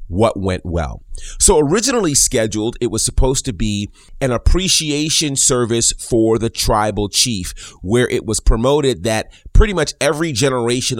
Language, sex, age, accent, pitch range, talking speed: English, male, 30-49, American, 95-120 Hz, 145 wpm